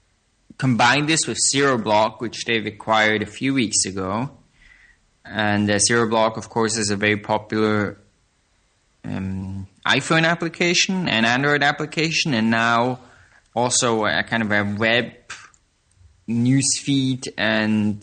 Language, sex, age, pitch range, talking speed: English, male, 20-39, 105-120 Hz, 125 wpm